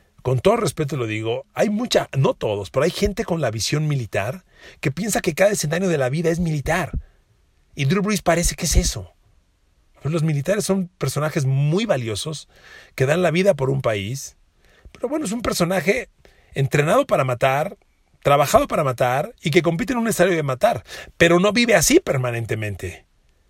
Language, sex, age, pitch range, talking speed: Spanish, male, 40-59, 125-195 Hz, 180 wpm